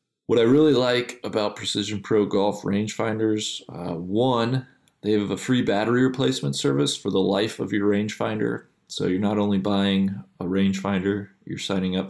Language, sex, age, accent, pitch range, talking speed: English, male, 20-39, American, 100-120 Hz, 165 wpm